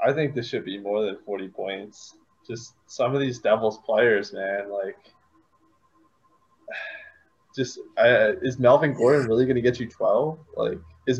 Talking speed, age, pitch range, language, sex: 160 wpm, 20-39, 105-140 Hz, English, male